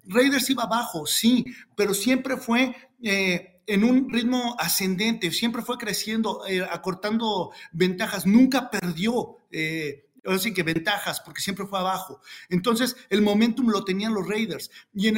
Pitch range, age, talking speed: 185-250 Hz, 50-69, 150 wpm